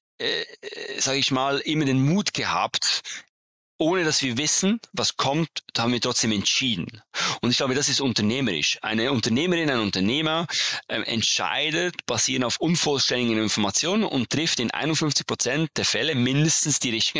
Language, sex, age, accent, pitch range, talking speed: German, male, 30-49, German, 110-140 Hz, 155 wpm